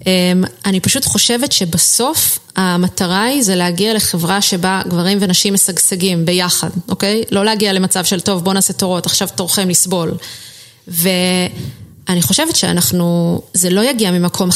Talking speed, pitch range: 135 wpm, 180-220 Hz